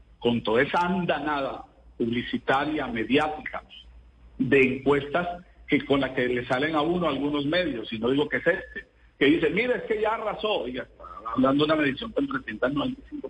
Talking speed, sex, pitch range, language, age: 175 wpm, male, 130-180 Hz, Spanish, 50-69